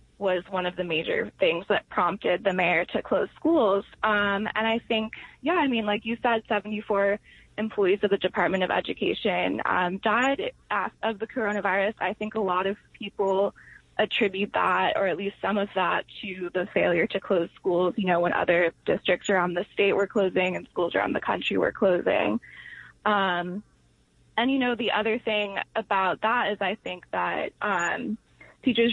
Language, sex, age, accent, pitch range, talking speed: English, female, 20-39, American, 180-215 Hz, 180 wpm